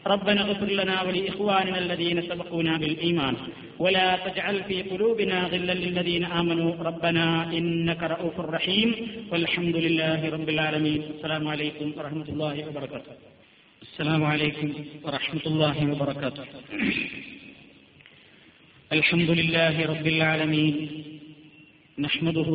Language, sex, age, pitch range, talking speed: Malayalam, male, 40-59, 155-170 Hz, 100 wpm